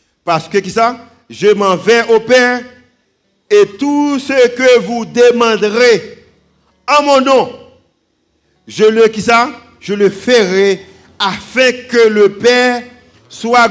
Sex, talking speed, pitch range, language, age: male, 125 wpm, 200-250 Hz, French, 50-69